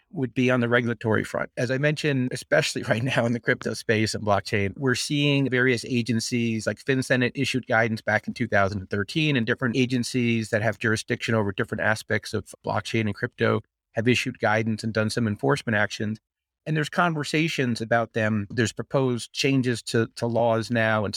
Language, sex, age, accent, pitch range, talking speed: English, male, 30-49, American, 110-130 Hz, 180 wpm